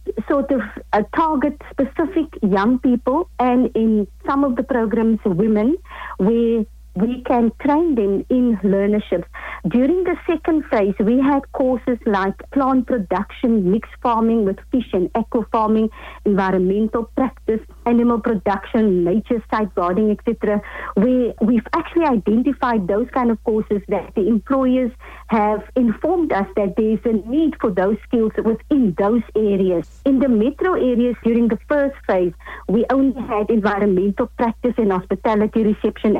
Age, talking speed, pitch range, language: 50-69, 140 wpm, 205-255 Hz, English